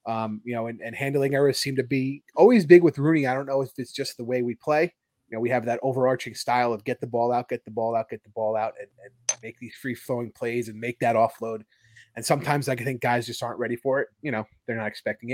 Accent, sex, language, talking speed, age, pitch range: American, male, English, 280 wpm, 30-49, 115-145 Hz